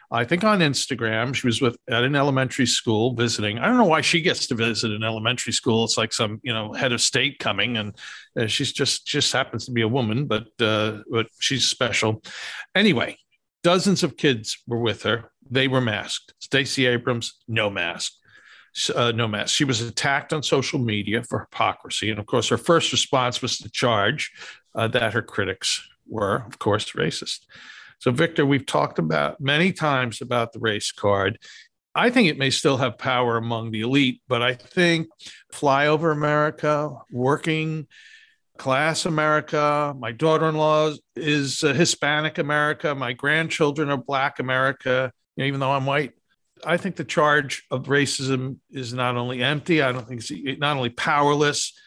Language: English